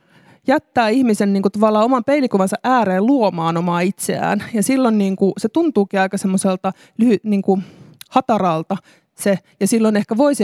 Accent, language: native, Finnish